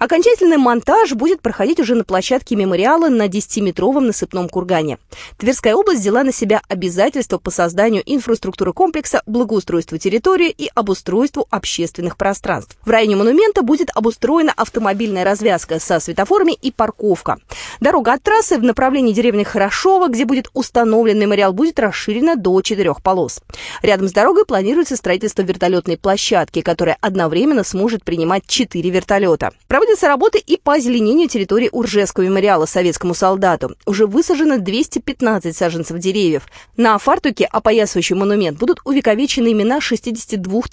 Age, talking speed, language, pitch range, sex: 20-39, 135 wpm, Russian, 185-270 Hz, female